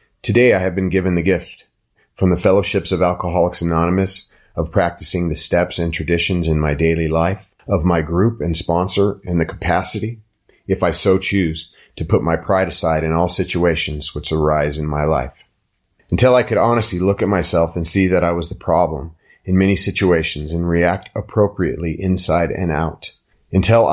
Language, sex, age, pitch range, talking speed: English, male, 30-49, 80-95 Hz, 180 wpm